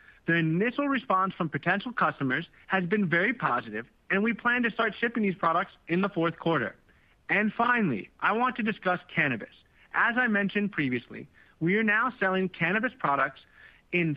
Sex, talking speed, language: male, 170 wpm, English